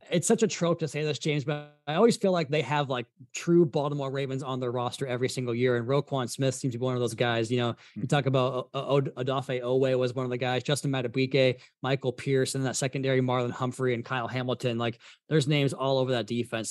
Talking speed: 245 wpm